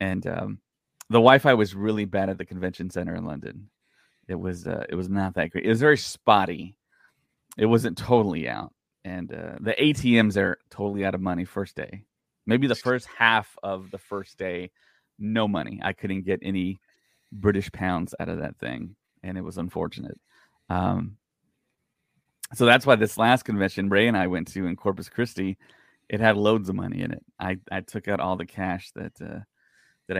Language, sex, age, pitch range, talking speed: English, male, 30-49, 95-115 Hz, 190 wpm